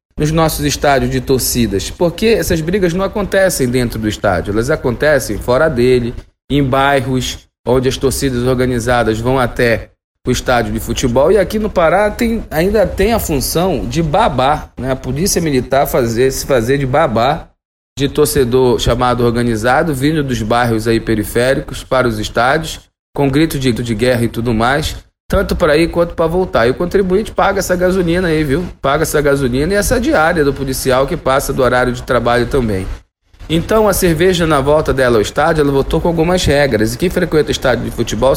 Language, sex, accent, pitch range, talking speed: Portuguese, male, Brazilian, 120-160 Hz, 180 wpm